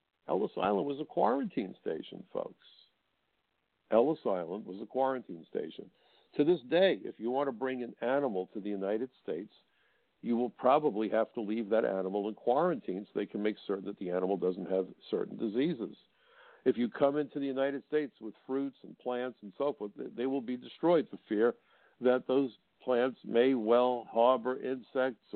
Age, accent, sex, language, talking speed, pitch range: 60-79, American, male, English, 180 wpm, 105-130 Hz